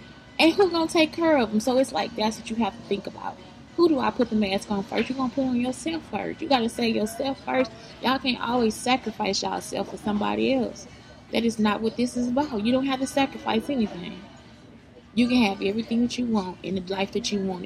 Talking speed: 250 wpm